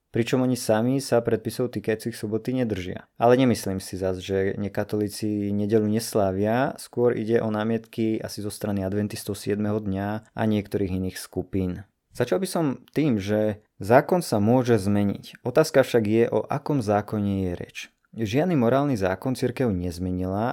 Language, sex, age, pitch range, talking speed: Slovak, male, 20-39, 105-125 Hz, 150 wpm